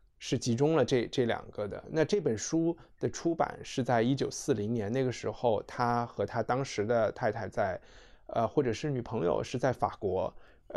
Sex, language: male, Chinese